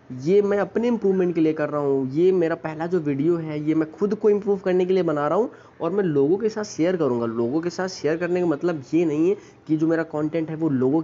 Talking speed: 270 wpm